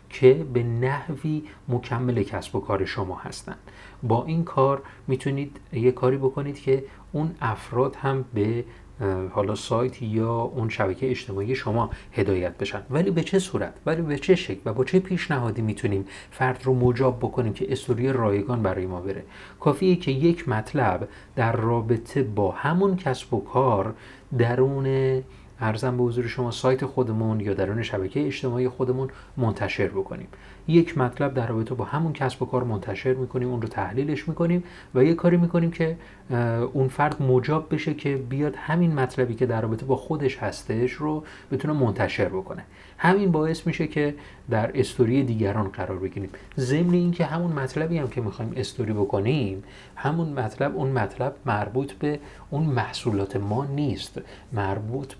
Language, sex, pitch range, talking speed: Persian, male, 110-140 Hz, 155 wpm